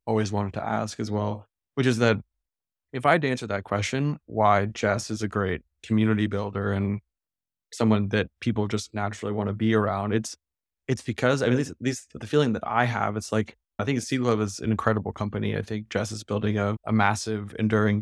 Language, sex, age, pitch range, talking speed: English, male, 20-39, 105-115 Hz, 220 wpm